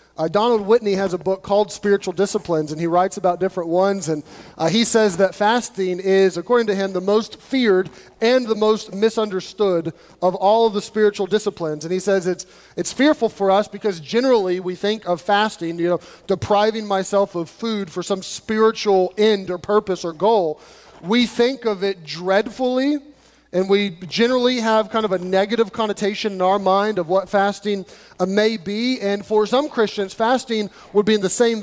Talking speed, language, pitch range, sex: 185 wpm, English, 185-225 Hz, male